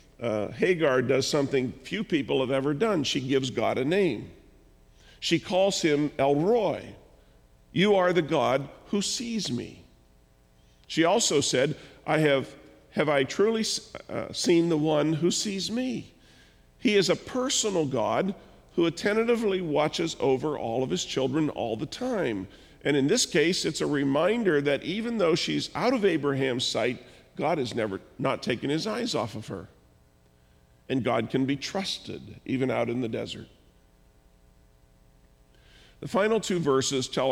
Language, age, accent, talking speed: English, 50-69, American, 155 wpm